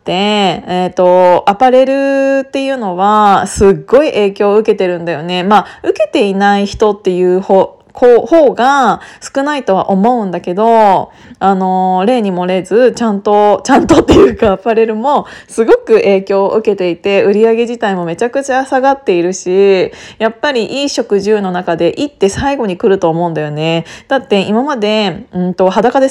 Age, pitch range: 20-39, 185-255 Hz